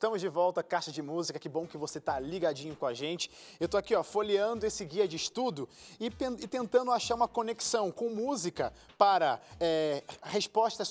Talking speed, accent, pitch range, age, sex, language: 180 wpm, Brazilian, 160-215 Hz, 20-39, male, Portuguese